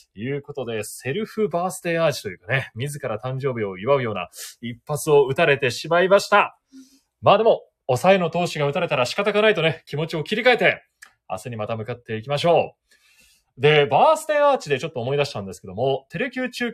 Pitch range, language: 130-205 Hz, Japanese